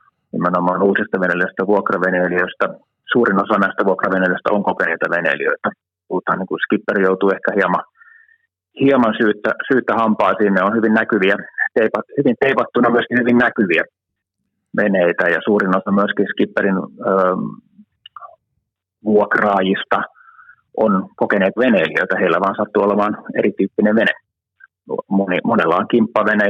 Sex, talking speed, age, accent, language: male, 115 wpm, 30-49, native, Finnish